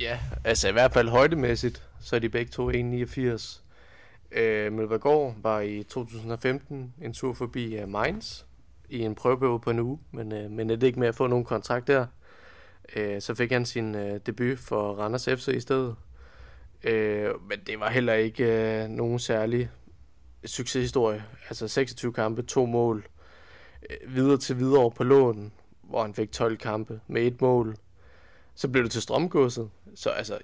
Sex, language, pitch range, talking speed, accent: male, Danish, 110-130 Hz, 165 wpm, native